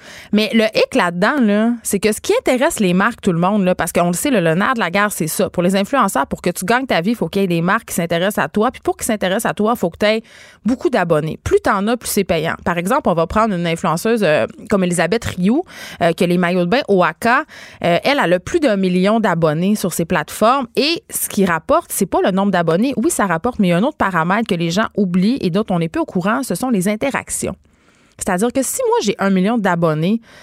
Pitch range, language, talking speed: 180-235 Hz, French, 275 wpm